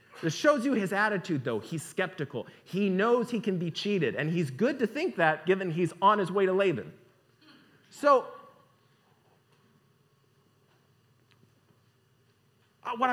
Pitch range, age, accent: 135-190 Hz, 30-49, American